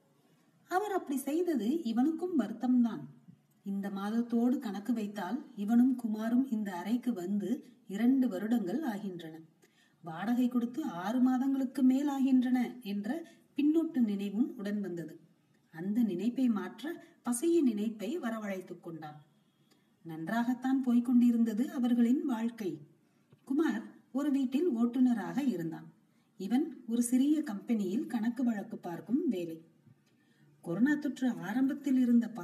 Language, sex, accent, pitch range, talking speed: Tamil, female, native, 205-265 Hz, 100 wpm